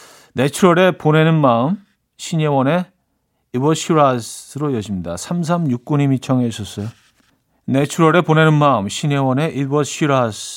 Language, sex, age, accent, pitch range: Korean, male, 40-59, native, 110-160 Hz